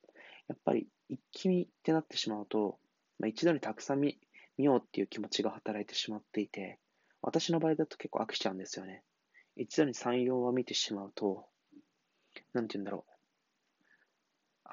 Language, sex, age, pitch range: Japanese, male, 20-39, 105-145 Hz